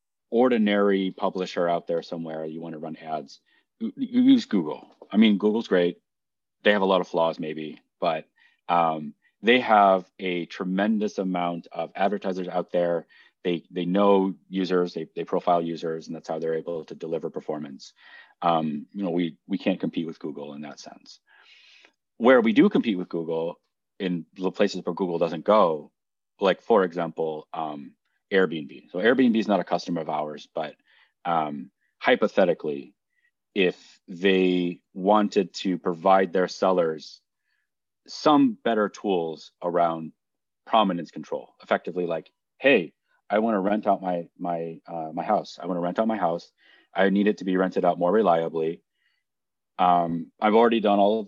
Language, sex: English, male